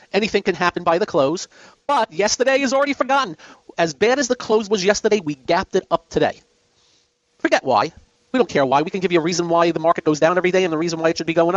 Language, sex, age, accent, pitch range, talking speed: English, male, 50-69, American, 175-235 Hz, 260 wpm